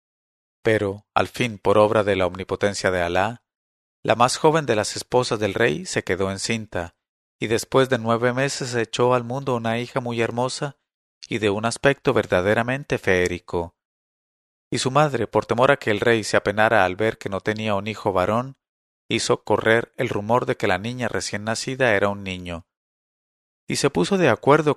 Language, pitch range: English, 95-125 Hz